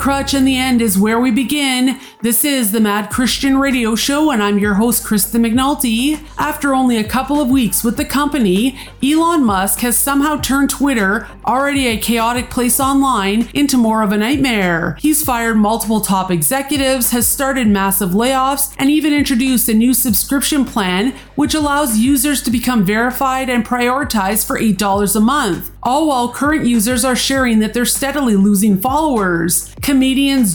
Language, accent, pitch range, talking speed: English, American, 220-275 Hz, 170 wpm